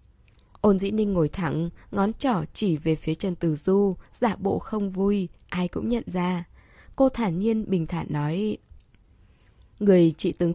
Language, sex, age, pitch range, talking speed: Vietnamese, female, 10-29, 170-225 Hz, 170 wpm